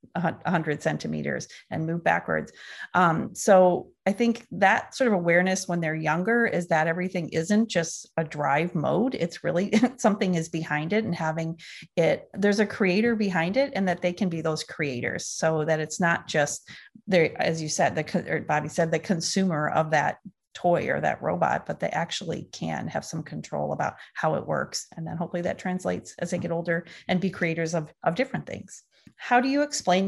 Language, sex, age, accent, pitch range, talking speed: English, female, 30-49, American, 160-185 Hz, 195 wpm